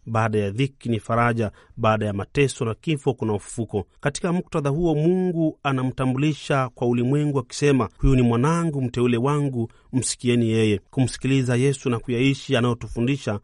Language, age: Swahili, 40-59